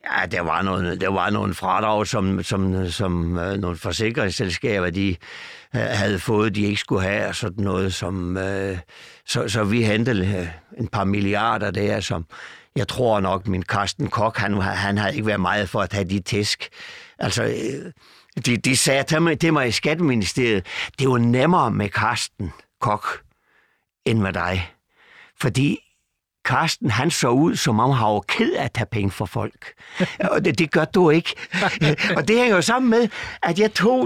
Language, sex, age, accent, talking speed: Danish, male, 60-79, native, 185 wpm